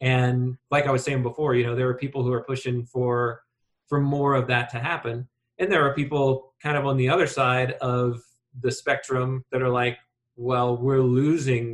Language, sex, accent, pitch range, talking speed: English, male, American, 120-135 Hz, 205 wpm